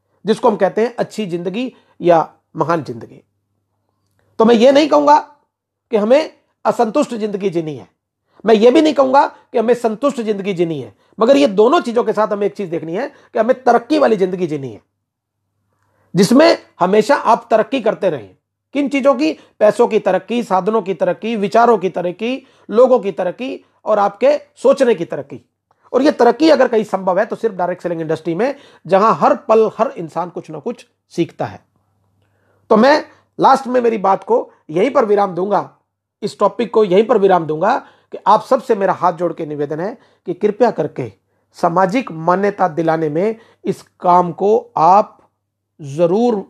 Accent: native